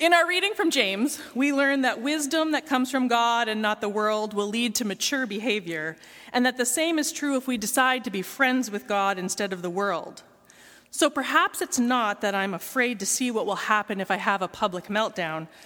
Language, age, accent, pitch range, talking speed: English, 30-49, American, 200-275 Hz, 220 wpm